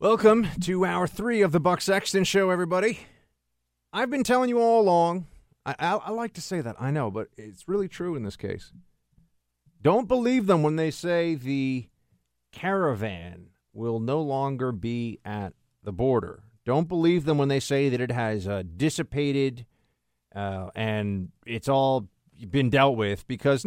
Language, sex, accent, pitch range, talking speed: English, male, American, 110-180 Hz, 165 wpm